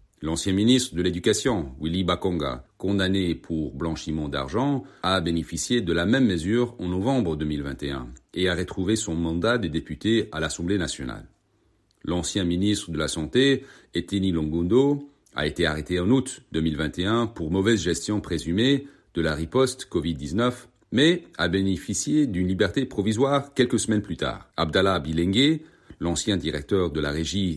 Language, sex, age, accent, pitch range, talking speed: French, male, 40-59, French, 85-115 Hz, 145 wpm